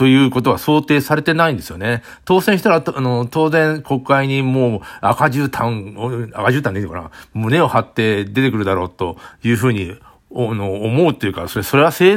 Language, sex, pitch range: Japanese, male, 100-135 Hz